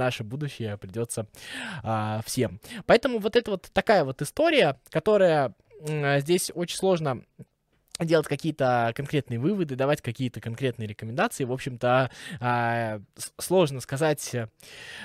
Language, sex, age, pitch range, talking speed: Russian, male, 20-39, 115-155 Hz, 110 wpm